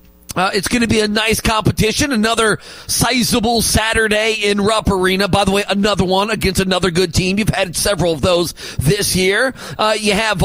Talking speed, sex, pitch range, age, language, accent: 190 wpm, male, 180-235 Hz, 30-49, English, American